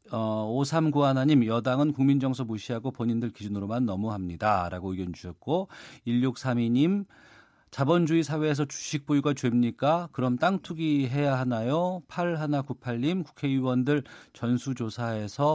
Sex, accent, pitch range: male, native, 115-150 Hz